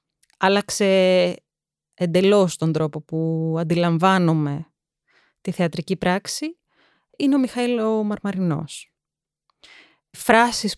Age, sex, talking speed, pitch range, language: 20-39, female, 85 wpm, 165-190 Hz, Greek